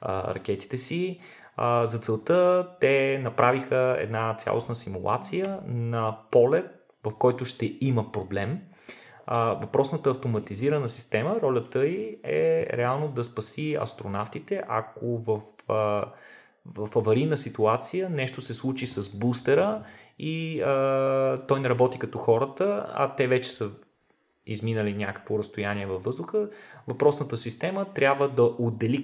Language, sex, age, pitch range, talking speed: Bulgarian, male, 20-39, 105-140 Hz, 125 wpm